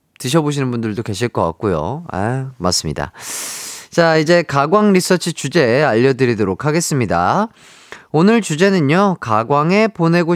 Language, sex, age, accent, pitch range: Korean, male, 30-49, native, 135-195 Hz